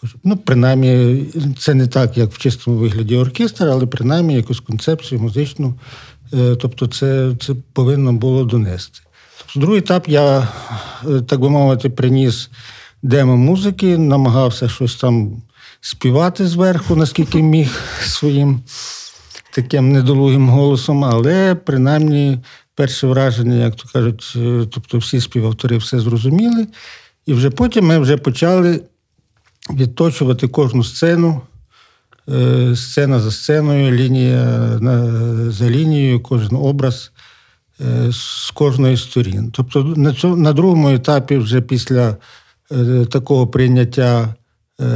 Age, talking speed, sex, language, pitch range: 50-69, 110 wpm, male, Ukrainian, 120-145 Hz